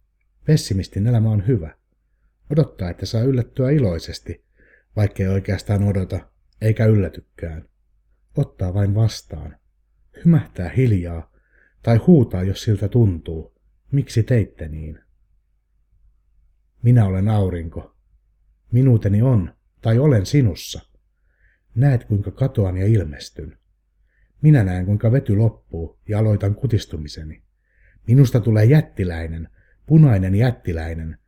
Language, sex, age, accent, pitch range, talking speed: Finnish, male, 60-79, native, 85-115 Hz, 100 wpm